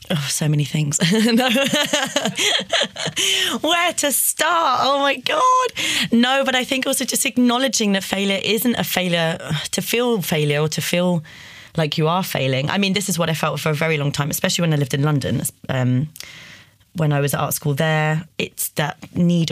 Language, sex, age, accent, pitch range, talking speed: German, female, 30-49, British, 135-175 Hz, 190 wpm